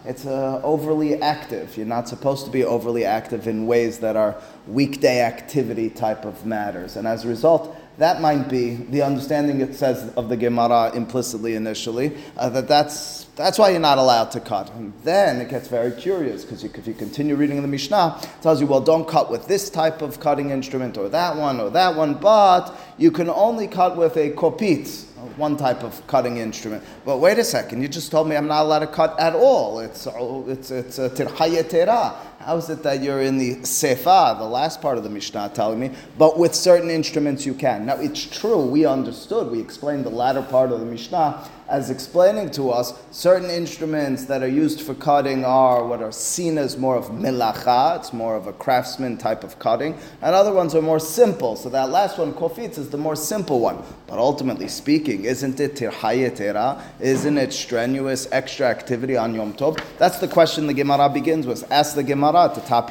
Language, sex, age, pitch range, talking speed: English, male, 30-49, 125-155 Hz, 205 wpm